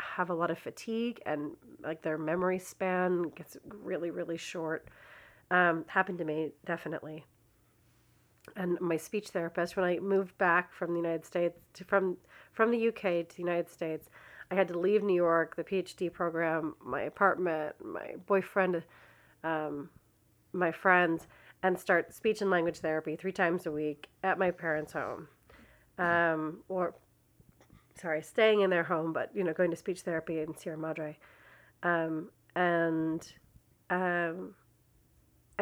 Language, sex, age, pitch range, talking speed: English, female, 30-49, 160-190 Hz, 150 wpm